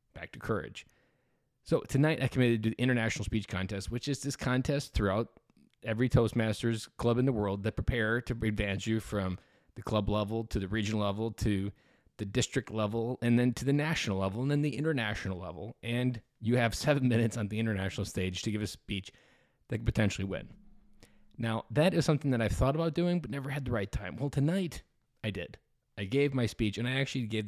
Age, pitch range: 20-39, 100-130 Hz